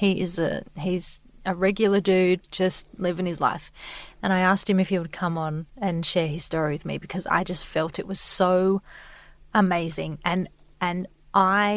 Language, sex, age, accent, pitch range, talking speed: English, female, 30-49, Australian, 175-200 Hz, 190 wpm